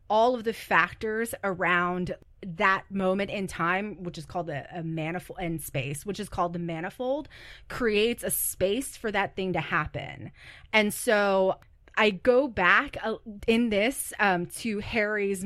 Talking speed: 150 wpm